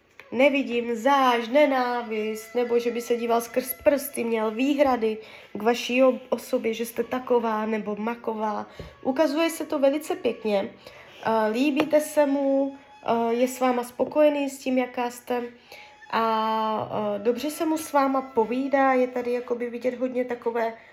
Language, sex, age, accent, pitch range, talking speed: Czech, female, 20-39, native, 225-270 Hz, 140 wpm